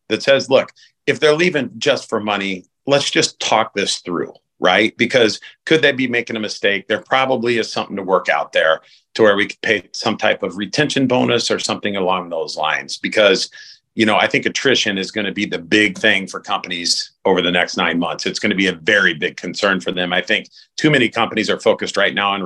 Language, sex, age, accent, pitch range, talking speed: English, male, 40-59, American, 100-120 Hz, 225 wpm